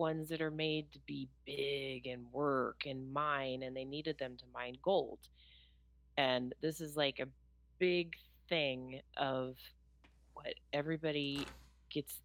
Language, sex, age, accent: English, female, 30-49, American